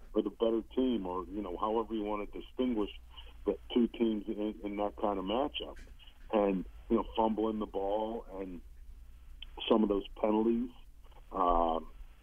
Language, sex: English, male